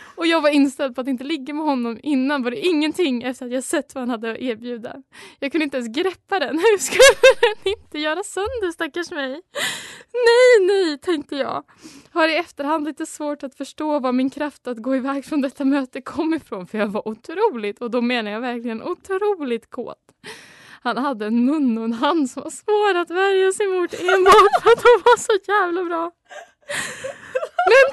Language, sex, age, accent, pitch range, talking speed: Swedish, female, 20-39, native, 250-335 Hz, 200 wpm